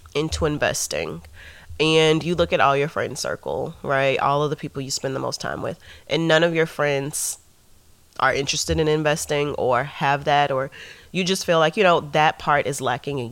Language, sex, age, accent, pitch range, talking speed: English, female, 30-49, American, 135-175 Hz, 205 wpm